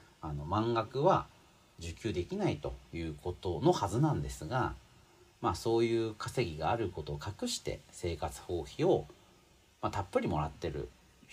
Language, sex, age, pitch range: Japanese, male, 40-59, 75-105 Hz